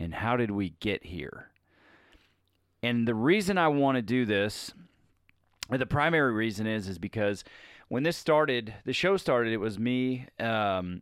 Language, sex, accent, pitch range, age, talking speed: English, male, American, 95-120 Hz, 30-49, 165 wpm